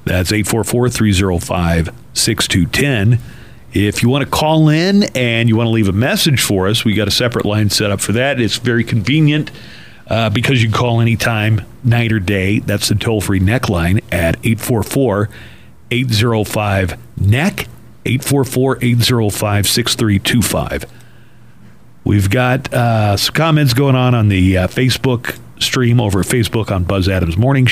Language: English